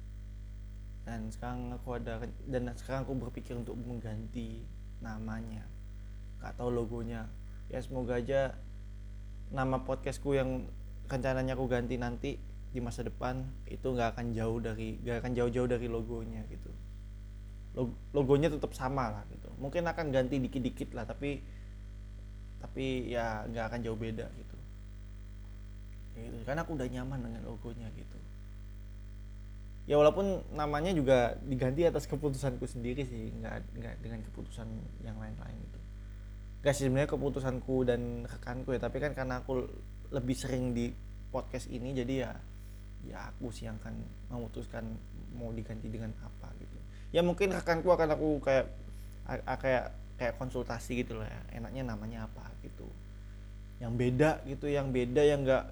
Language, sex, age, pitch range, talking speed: Indonesian, male, 20-39, 100-130 Hz, 135 wpm